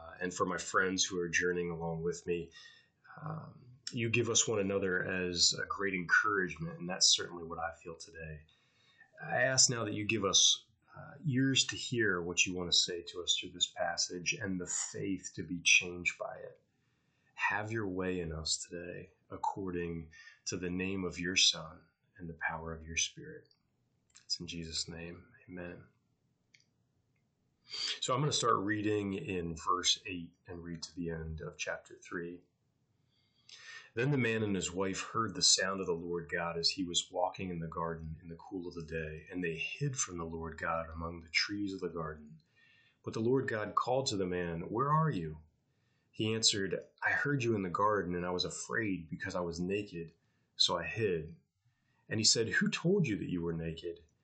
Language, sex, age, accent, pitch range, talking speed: English, male, 30-49, American, 85-115 Hz, 195 wpm